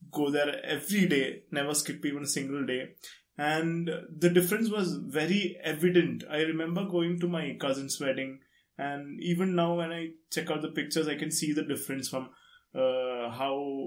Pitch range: 130-165 Hz